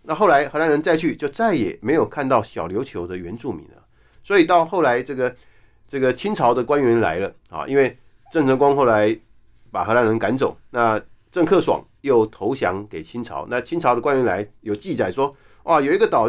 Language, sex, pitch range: Chinese, male, 115-150 Hz